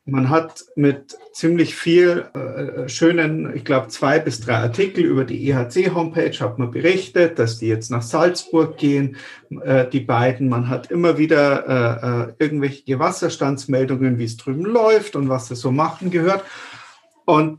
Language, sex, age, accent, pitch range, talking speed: German, male, 50-69, German, 130-165 Hz, 155 wpm